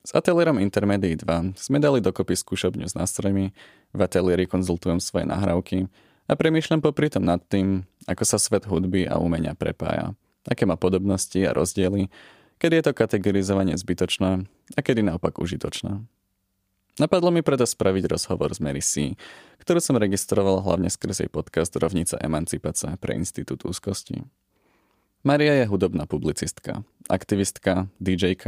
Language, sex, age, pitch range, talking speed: Czech, male, 20-39, 90-110 Hz, 140 wpm